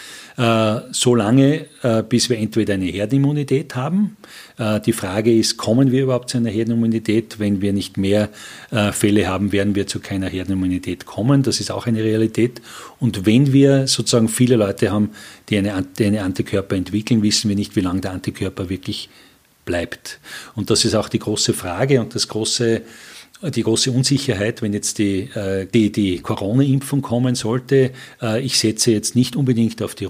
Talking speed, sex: 165 wpm, male